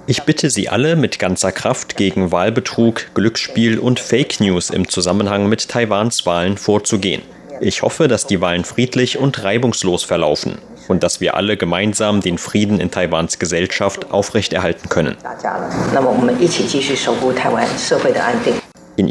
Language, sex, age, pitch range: German, male, 30-49, 90-115 Hz